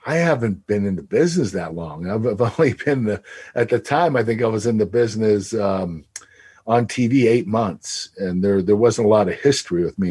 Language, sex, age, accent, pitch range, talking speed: English, male, 50-69, American, 95-115 Hz, 220 wpm